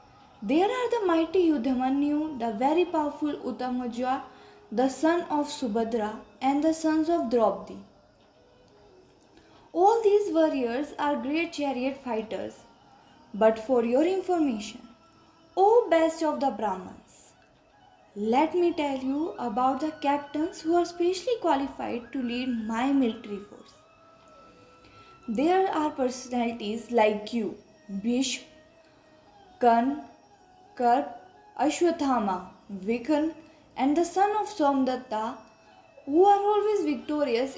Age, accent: 20-39, native